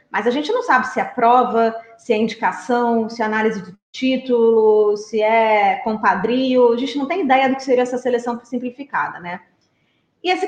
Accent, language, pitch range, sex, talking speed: Brazilian, Portuguese, 230-310 Hz, female, 190 wpm